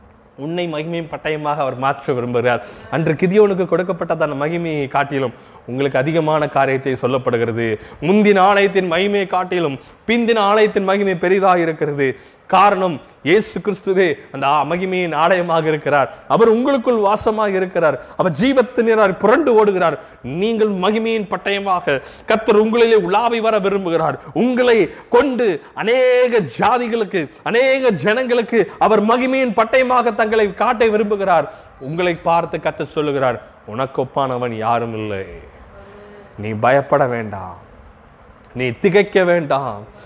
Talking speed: 85 wpm